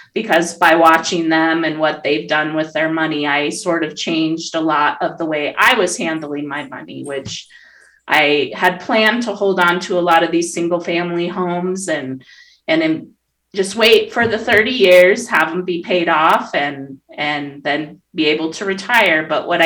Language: English